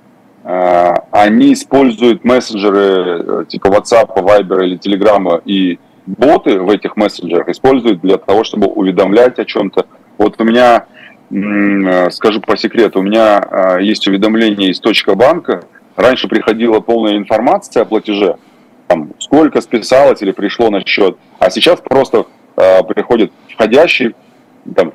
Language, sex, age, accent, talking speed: Russian, male, 30-49, native, 120 wpm